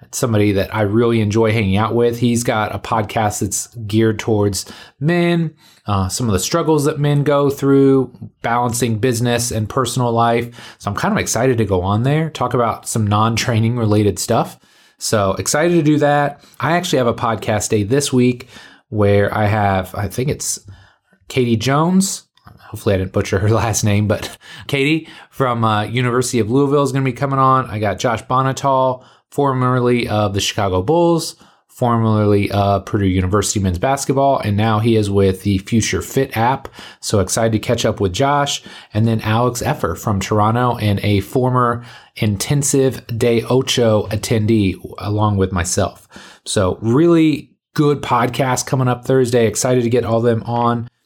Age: 30-49